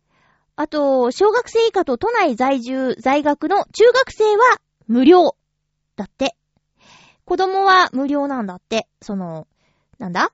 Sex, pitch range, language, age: female, 230-360 Hz, Japanese, 20-39